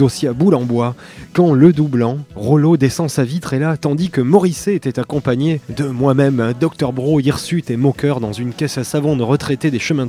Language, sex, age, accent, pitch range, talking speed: French, male, 20-39, French, 125-155 Hz, 215 wpm